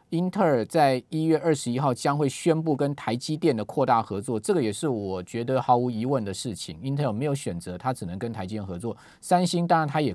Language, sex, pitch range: Chinese, male, 110-155 Hz